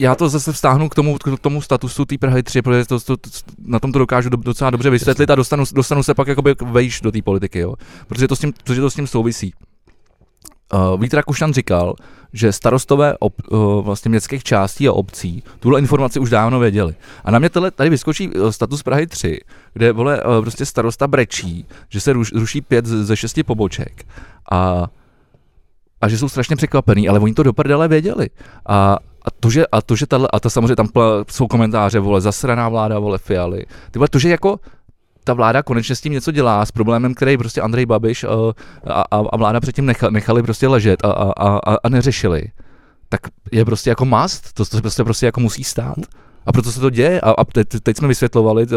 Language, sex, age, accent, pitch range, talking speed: Czech, male, 20-39, native, 110-130 Hz, 205 wpm